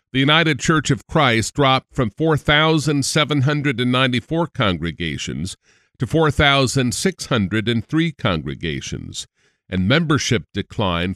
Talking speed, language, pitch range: 80 wpm, English, 115-155 Hz